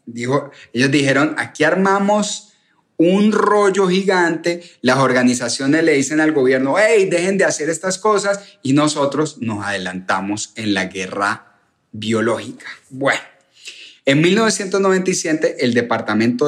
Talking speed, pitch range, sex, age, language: 115 wpm, 130-190 Hz, male, 30-49, Spanish